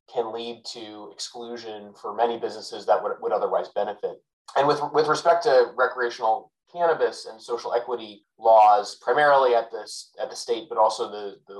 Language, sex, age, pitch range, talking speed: English, male, 30-49, 110-145 Hz, 170 wpm